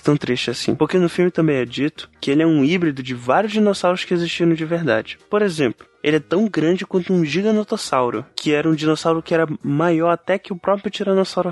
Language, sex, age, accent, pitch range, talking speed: Portuguese, male, 20-39, Brazilian, 155-190 Hz, 220 wpm